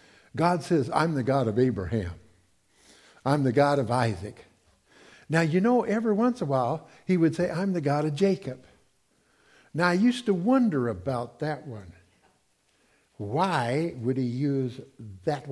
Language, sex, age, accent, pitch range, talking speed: English, male, 60-79, American, 125-180 Hz, 160 wpm